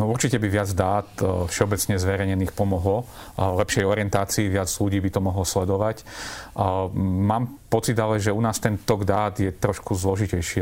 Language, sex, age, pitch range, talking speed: Slovak, male, 40-59, 95-110 Hz, 165 wpm